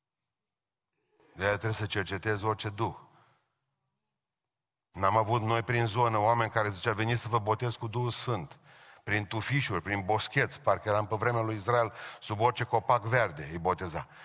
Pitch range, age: 110-130 Hz, 40-59